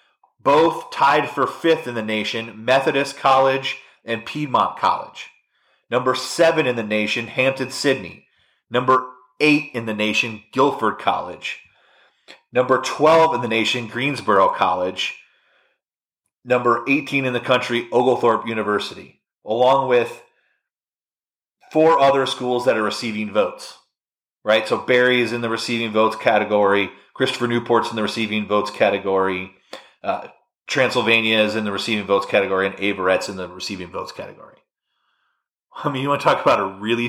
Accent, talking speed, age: American, 145 wpm, 30-49